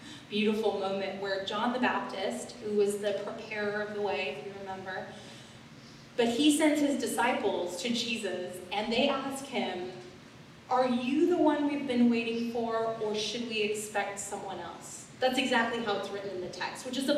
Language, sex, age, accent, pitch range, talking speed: English, female, 30-49, American, 200-245 Hz, 180 wpm